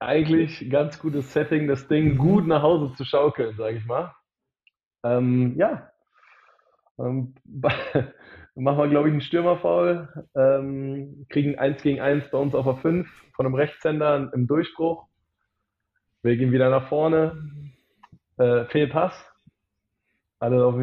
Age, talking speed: 20-39, 130 wpm